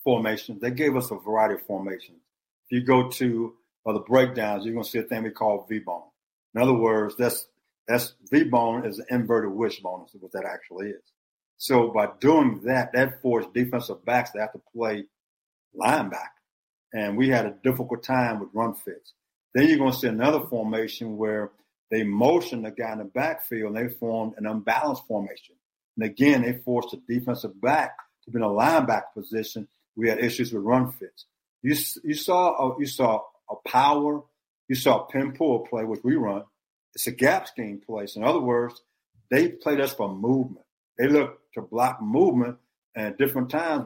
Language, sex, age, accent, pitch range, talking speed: English, male, 50-69, American, 110-135 Hz, 195 wpm